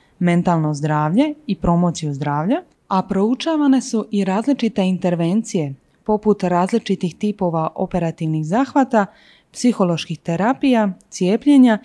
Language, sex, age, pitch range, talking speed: Croatian, female, 20-39, 175-250 Hz, 95 wpm